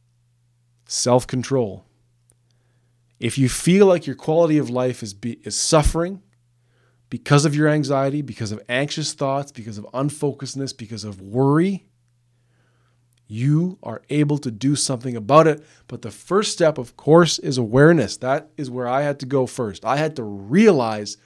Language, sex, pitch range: English, male, 120-150 Hz